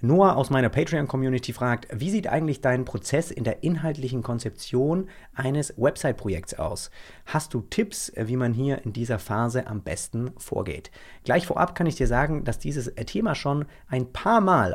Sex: male